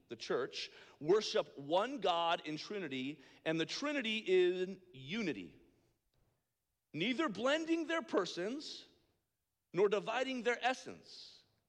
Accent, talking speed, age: American, 105 wpm, 40-59